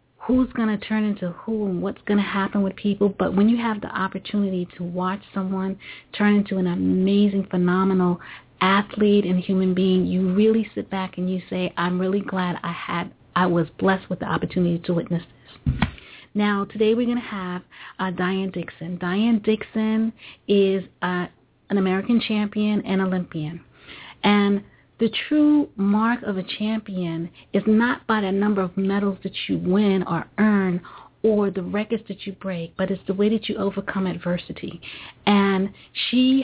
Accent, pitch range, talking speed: American, 180-205 Hz, 170 wpm